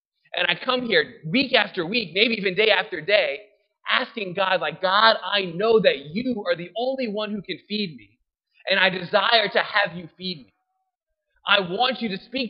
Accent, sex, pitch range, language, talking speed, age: American, male, 180-240 Hz, English, 195 wpm, 30-49